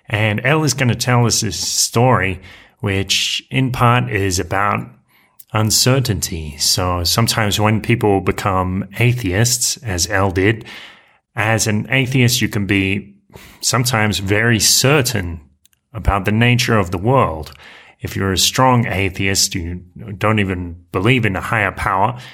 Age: 30-49